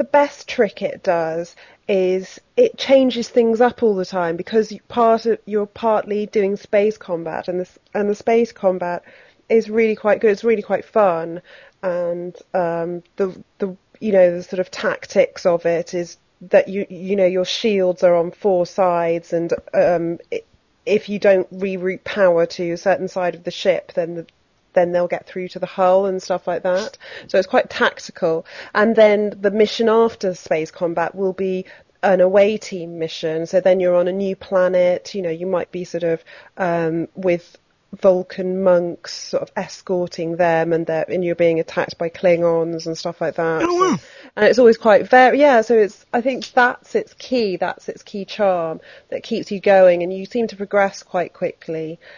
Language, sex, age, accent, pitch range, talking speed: English, female, 30-49, British, 175-215 Hz, 190 wpm